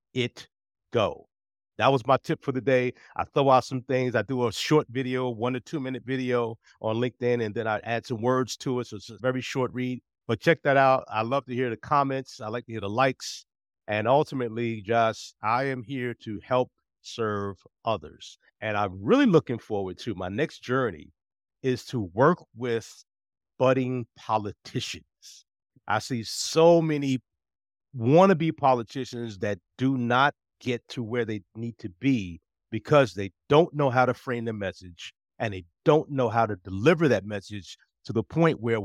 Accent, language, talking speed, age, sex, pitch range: American, English, 185 wpm, 50-69, male, 105-135 Hz